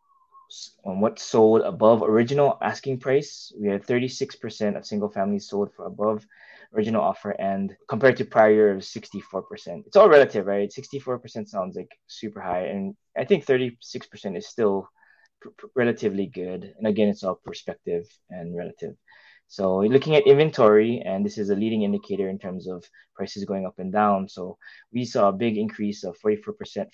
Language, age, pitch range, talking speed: English, 20-39, 100-140 Hz, 170 wpm